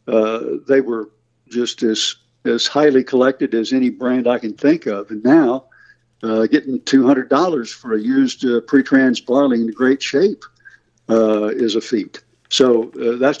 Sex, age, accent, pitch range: male, 60-79, American, 115-145 Hz